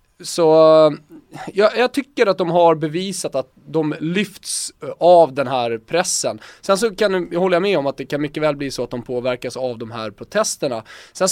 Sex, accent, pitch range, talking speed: male, native, 150-200 Hz, 195 wpm